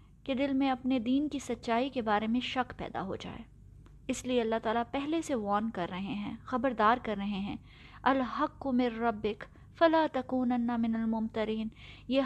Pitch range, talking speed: 225-295 Hz, 180 wpm